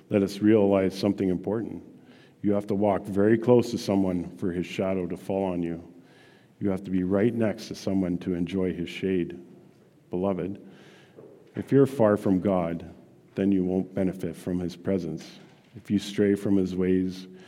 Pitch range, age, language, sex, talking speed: 90-105 Hz, 50-69, English, male, 175 wpm